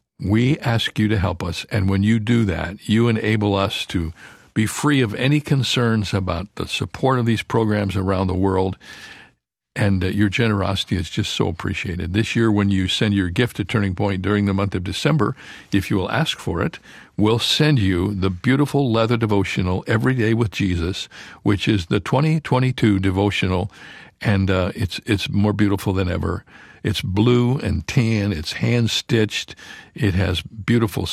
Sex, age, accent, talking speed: male, 60-79, American, 175 wpm